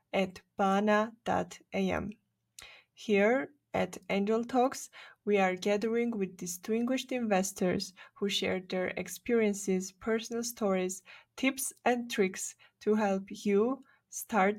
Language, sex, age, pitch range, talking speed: English, female, 20-39, 190-225 Hz, 105 wpm